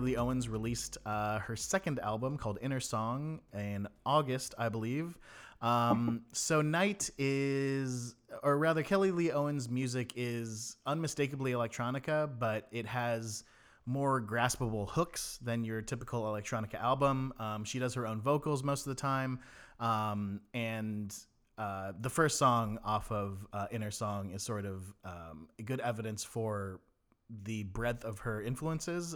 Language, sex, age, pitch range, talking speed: English, male, 30-49, 105-130 Hz, 145 wpm